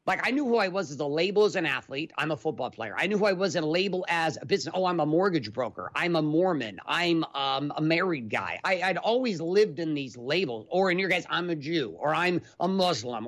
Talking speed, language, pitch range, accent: 260 wpm, English, 135-180 Hz, American